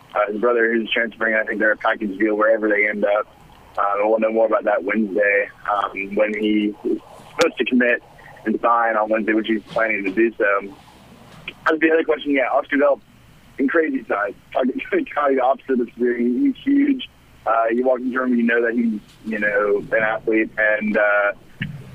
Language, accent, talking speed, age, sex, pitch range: English, American, 180 wpm, 30-49, male, 110-125 Hz